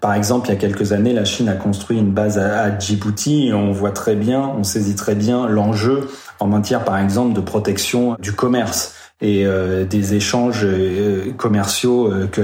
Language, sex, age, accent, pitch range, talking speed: French, male, 30-49, French, 110-145 Hz, 185 wpm